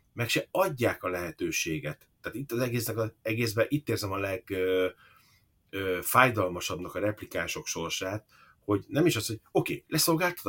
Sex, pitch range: male, 100-130 Hz